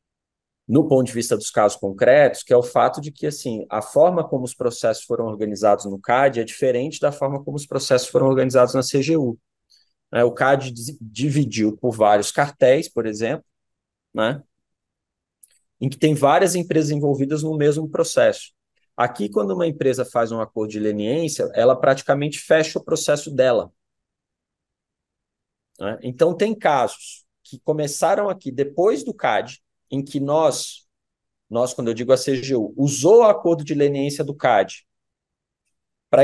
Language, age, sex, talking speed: Portuguese, 20-39, male, 150 wpm